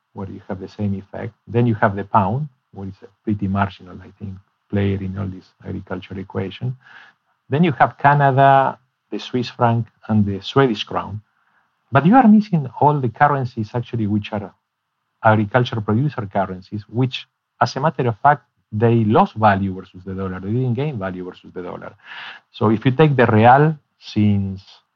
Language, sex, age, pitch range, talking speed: English, male, 50-69, 100-125 Hz, 175 wpm